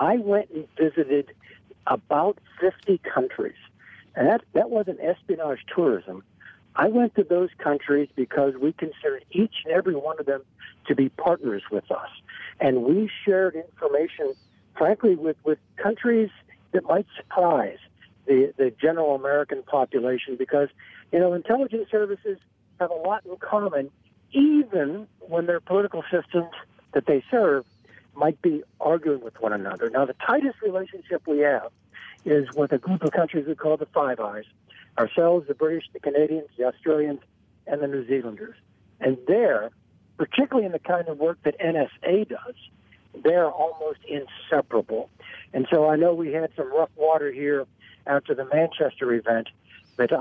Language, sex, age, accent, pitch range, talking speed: English, male, 60-79, American, 140-190 Hz, 155 wpm